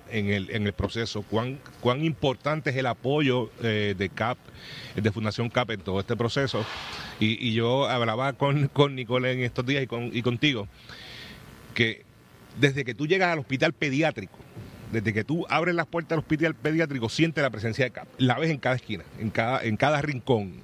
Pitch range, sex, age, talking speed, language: 105-135 Hz, male, 40-59, 195 wpm, Spanish